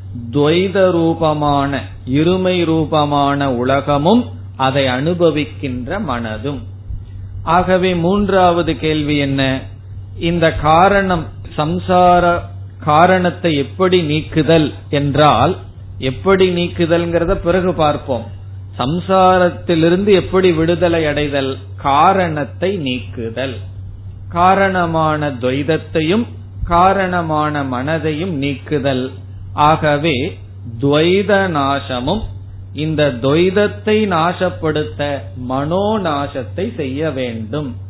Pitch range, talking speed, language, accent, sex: 120-170 Hz, 65 wpm, Tamil, native, male